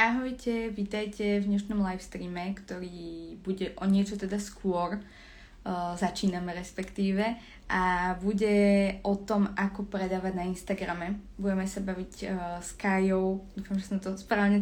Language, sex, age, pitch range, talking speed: Slovak, female, 20-39, 185-205 Hz, 140 wpm